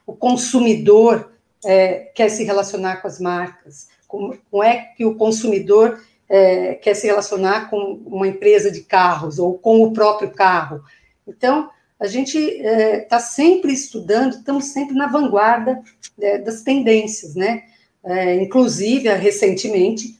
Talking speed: 120 wpm